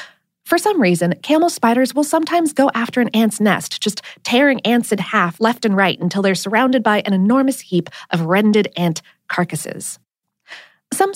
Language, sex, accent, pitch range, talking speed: English, female, American, 190-270 Hz, 170 wpm